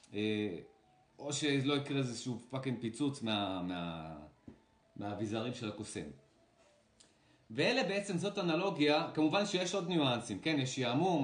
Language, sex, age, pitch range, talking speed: Hebrew, male, 30-49, 115-155 Hz, 115 wpm